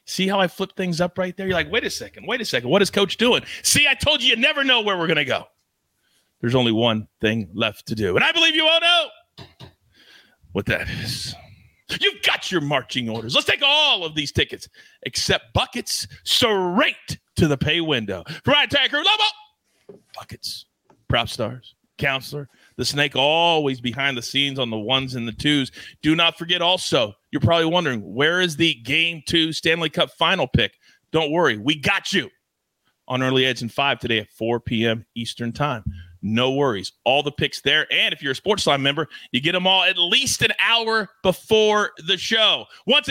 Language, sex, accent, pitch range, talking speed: English, male, American, 125-205 Hz, 200 wpm